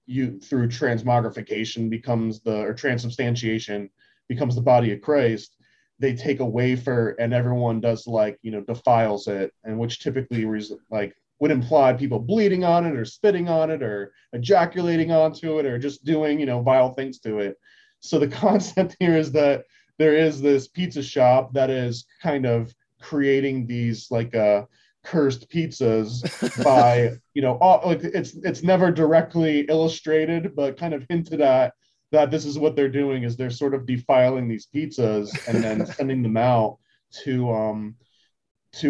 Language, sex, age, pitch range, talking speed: English, male, 30-49, 115-150 Hz, 165 wpm